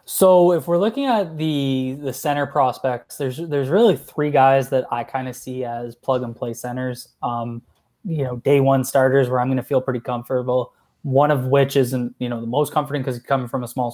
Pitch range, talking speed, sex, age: 125-140 Hz, 225 wpm, male, 20-39